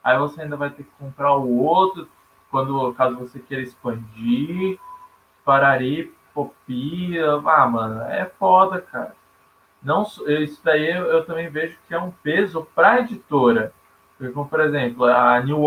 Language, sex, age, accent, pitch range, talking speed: Portuguese, male, 20-39, Brazilian, 125-160 Hz, 145 wpm